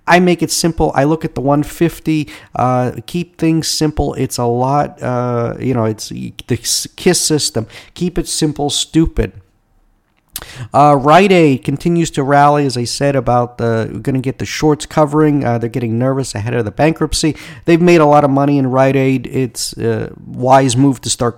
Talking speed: 190 wpm